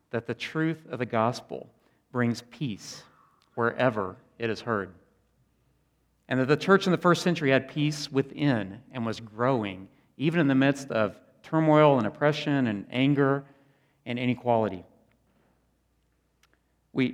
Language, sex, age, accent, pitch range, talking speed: English, male, 40-59, American, 110-145 Hz, 135 wpm